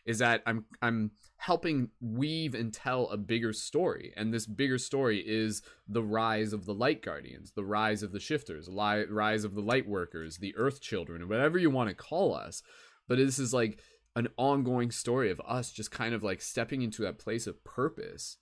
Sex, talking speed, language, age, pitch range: male, 200 wpm, English, 20-39, 105-130 Hz